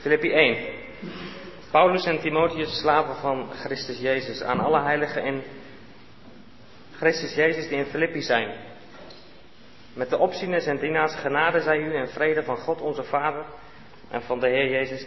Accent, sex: Dutch, male